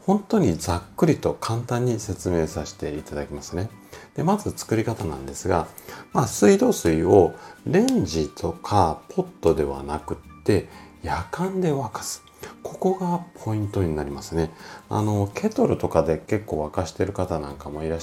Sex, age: male, 40-59